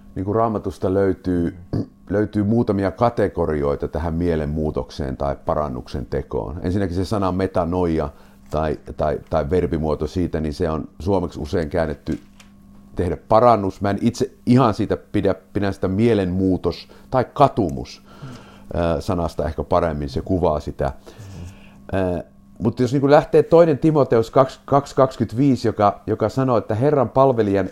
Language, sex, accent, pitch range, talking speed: Finnish, male, native, 90-120 Hz, 125 wpm